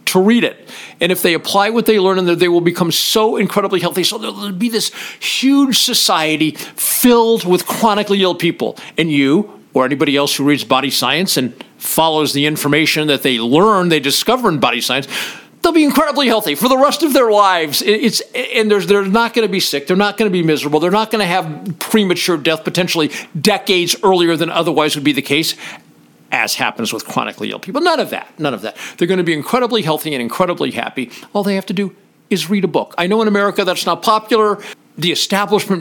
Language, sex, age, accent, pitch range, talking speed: English, male, 50-69, American, 155-215 Hz, 215 wpm